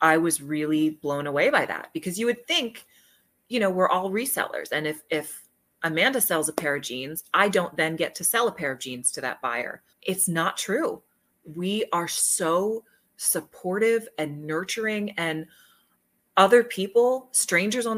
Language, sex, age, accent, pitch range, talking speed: English, female, 30-49, American, 160-230 Hz, 175 wpm